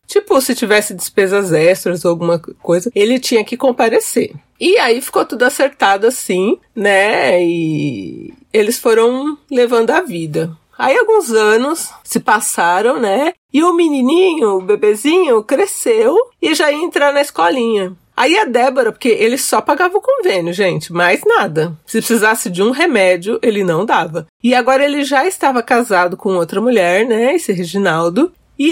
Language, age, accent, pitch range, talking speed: Portuguese, 40-59, Brazilian, 185-275 Hz, 160 wpm